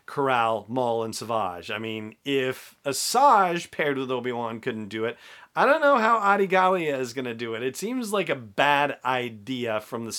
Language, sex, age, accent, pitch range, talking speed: English, male, 40-59, American, 120-170 Hz, 190 wpm